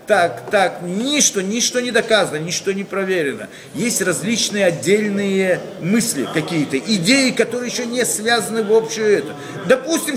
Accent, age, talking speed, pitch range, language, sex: native, 40-59, 135 wpm, 150-225 Hz, Russian, male